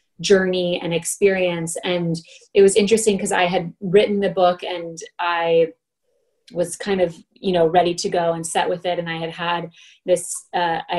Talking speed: 175 wpm